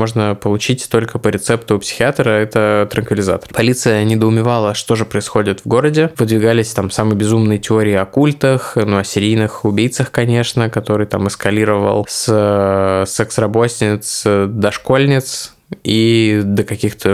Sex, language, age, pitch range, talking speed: male, Russian, 20-39, 105-125 Hz, 135 wpm